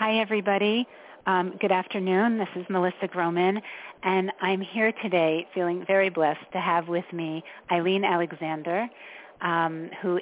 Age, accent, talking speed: 40-59, American, 140 wpm